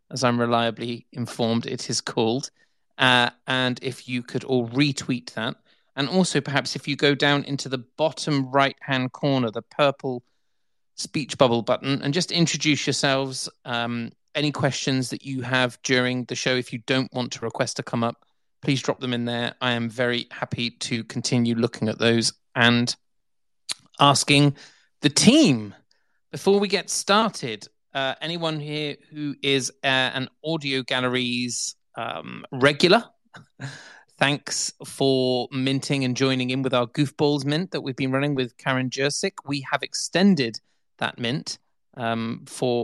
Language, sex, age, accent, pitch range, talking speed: English, male, 30-49, British, 120-140 Hz, 155 wpm